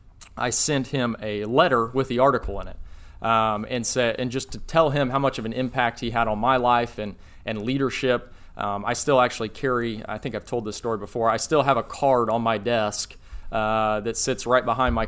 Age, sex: 30-49, male